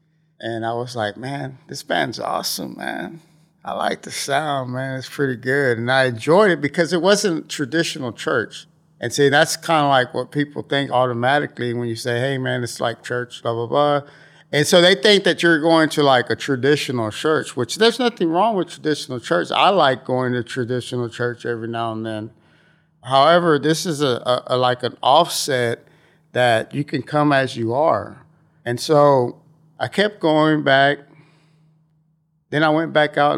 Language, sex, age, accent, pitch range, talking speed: English, male, 50-69, American, 125-155 Hz, 185 wpm